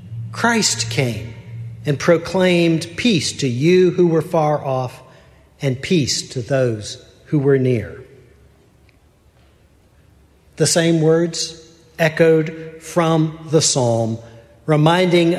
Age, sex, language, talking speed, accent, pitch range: 50-69, male, English, 100 wpm, American, 130-180 Hz